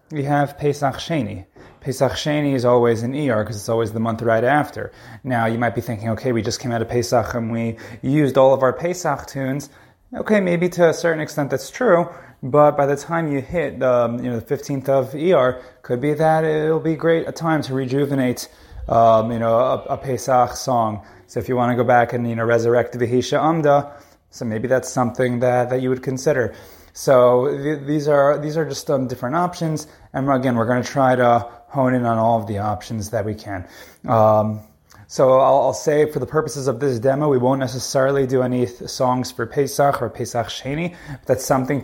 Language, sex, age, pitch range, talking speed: English, male, 20-39, 120-145 Hz, 215 wpm